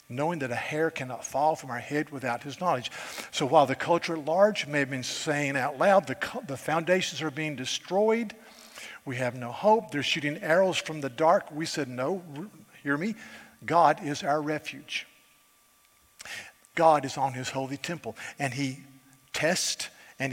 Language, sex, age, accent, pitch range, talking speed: English, male, 50-69, American, 130-160 Hz, 175 wpm